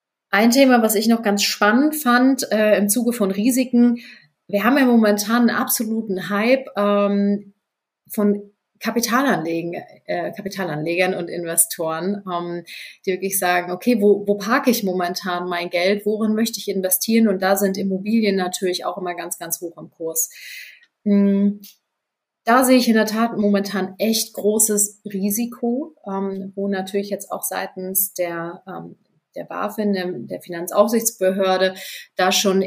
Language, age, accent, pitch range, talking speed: German, 30-49, German, 185-215 Hz, 145 wpm